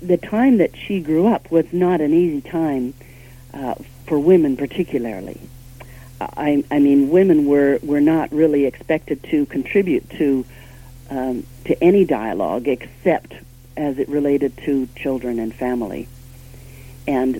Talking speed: 140 wpm